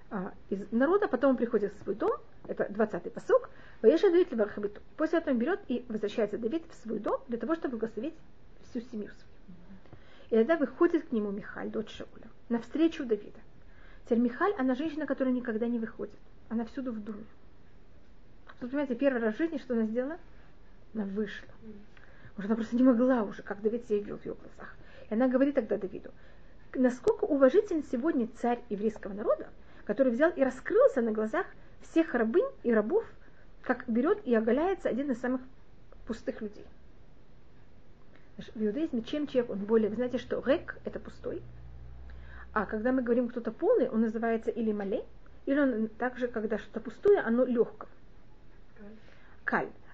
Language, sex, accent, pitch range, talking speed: Russian, female, native, 220-275 Hz, 165 wpm